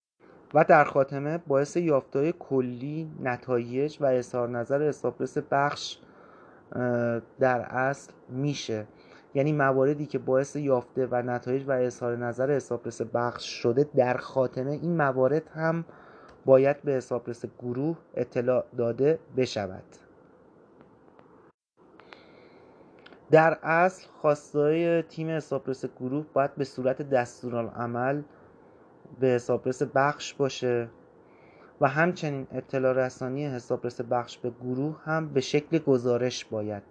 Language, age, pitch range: English, 30-49, 120-145 Hz